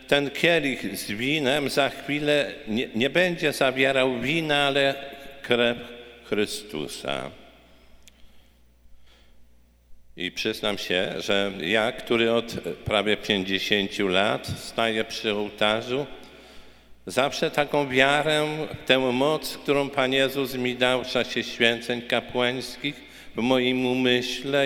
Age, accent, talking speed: 50-69, native, 105 wpm